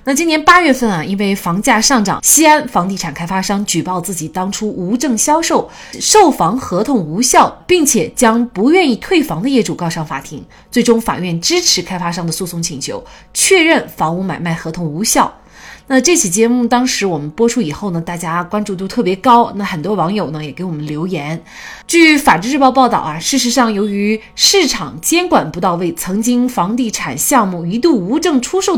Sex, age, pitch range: female, 20-39, 175-285 Hz